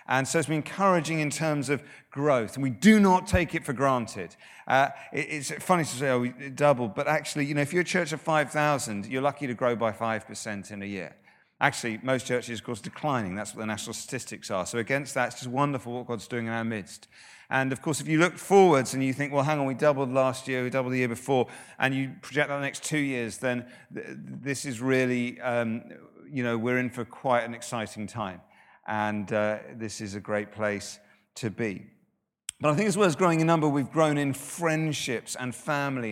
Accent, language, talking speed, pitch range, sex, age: British, English, 230 wpm, 115-150 Hz, male, 40-59